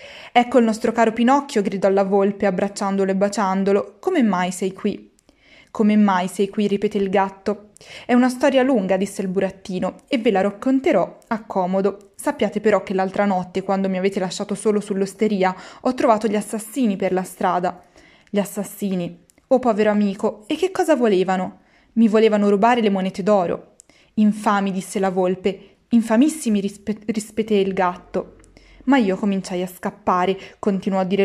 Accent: native